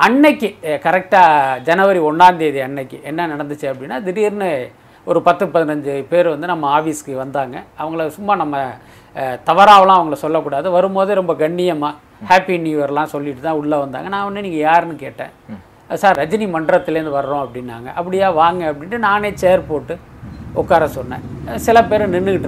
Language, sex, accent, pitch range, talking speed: Tamil, male, native, 150-200 Hz, 140 wpm